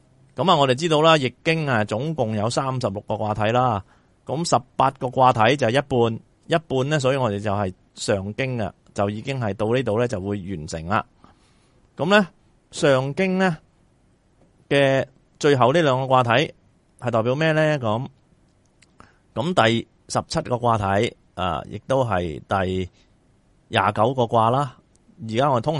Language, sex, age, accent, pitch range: Chinese, male, 30-49, native, 105-135 Hz